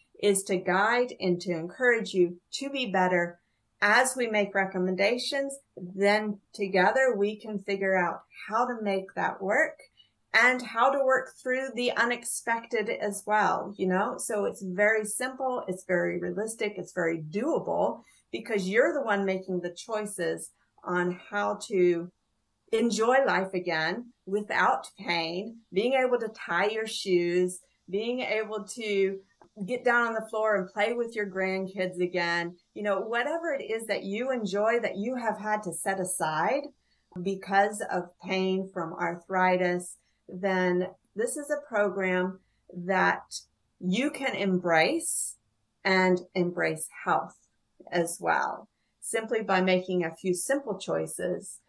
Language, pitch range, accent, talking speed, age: English, 180-225 Hz, American, 140 wpm, 50-69